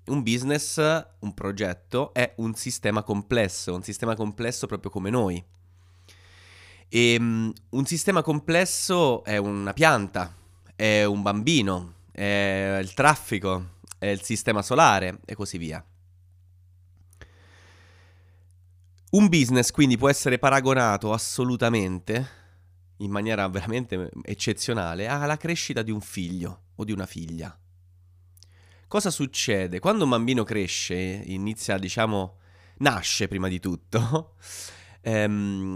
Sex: male